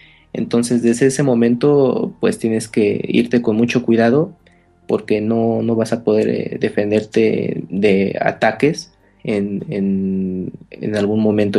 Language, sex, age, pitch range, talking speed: Spanish, male, 30-49, 110-130 Hz, 130 wpm